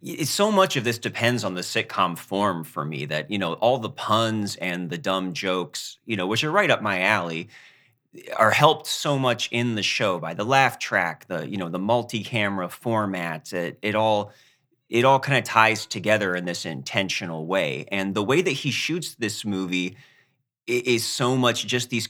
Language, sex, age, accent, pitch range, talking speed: English, male, 30-49, American, 95-125 Hz, 190 wpm